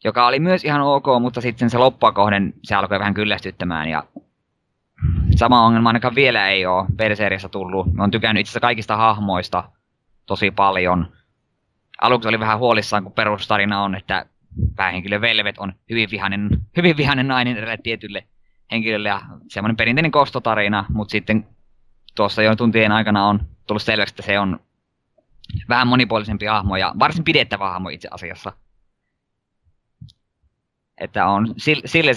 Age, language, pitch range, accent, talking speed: 20-39, Finnish, 100-115 Hz, native, 140 wpm